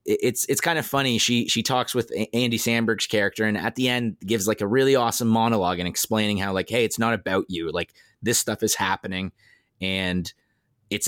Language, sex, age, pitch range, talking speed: English, male, 20-39, 100-130 Hz, 205 wpm